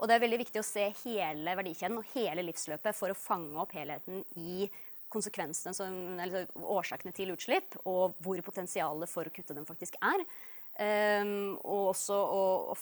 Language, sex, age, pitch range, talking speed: English, female, 20-39, 165-210 Hz, 185 wpm